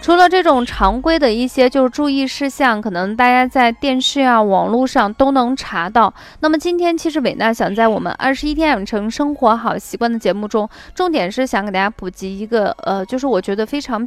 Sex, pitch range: female, 215-295 Hz